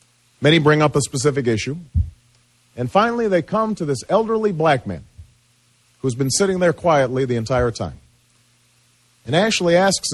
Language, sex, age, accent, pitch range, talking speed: English, male, 40-59, American, 115-145 Hz, 155 wpm